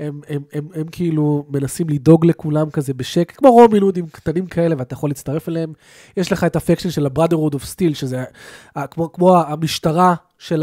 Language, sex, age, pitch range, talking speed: Hebrew, male, 20-39, 145-180 Hz, 205 wpm